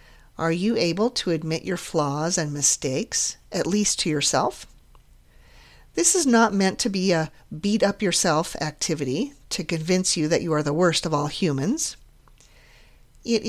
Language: English